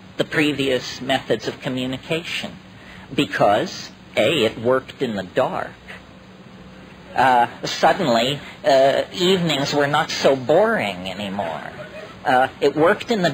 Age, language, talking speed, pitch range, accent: 50-69, English, 115 wpm, 130-175 Hz, American